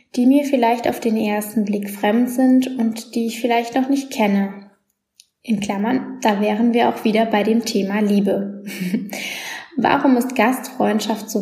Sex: female